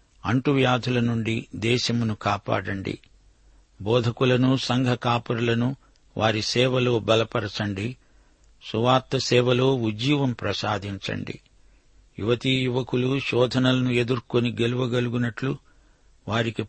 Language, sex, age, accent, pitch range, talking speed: Telugu, male, 60-79, native, 105-125 Hz, 75 wpm